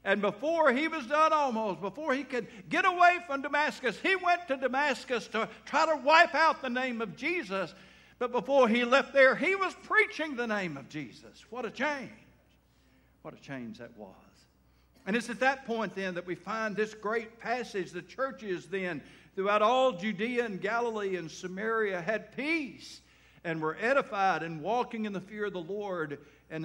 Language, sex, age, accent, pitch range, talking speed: English, male, 60-79, American, 140-230 Hz, 185 wpm